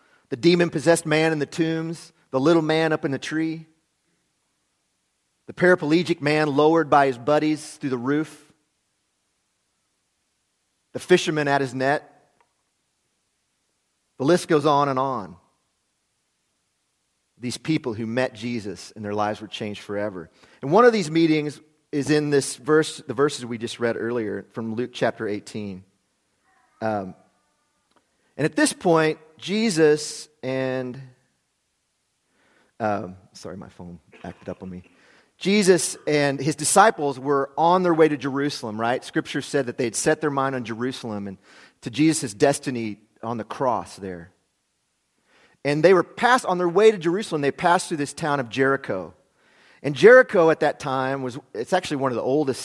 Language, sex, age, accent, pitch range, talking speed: English, male, 40-59, American, 120-160 Hz, 155 wpm